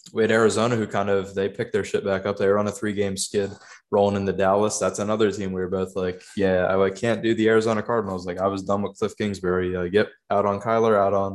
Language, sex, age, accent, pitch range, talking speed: English, male, 20-39, American, 95-105 Hz, 265 wpm